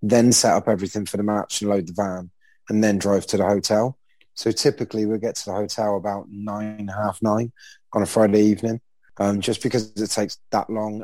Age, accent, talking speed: 20-39, British, 225 wpm